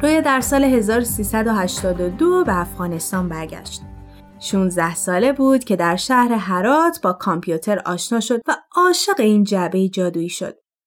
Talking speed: 130 wpm